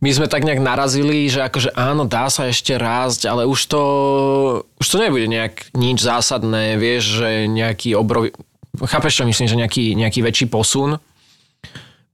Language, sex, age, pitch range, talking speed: Slovak, male, 20-39, 110-130 Hz, 170 wpm